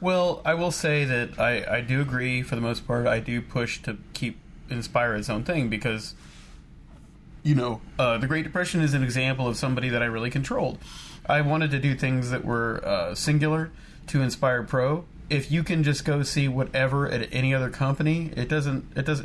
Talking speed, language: 205 wpm, English